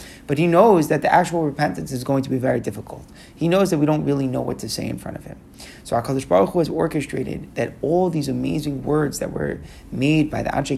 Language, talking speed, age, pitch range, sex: English, 245 wpm, 30-49, 145-170 Hz, male